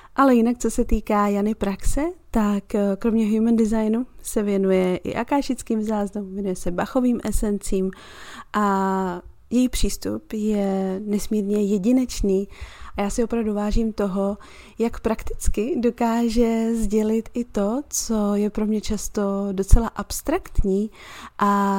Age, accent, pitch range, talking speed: 30-49, native, 200-230 Hz, 125 wpm